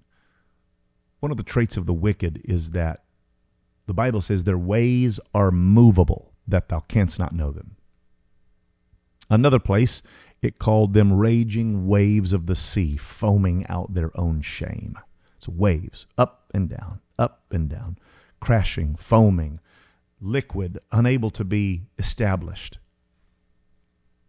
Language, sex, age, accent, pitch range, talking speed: English, male, 40-59, American, 85-110 Hz, 130 wpm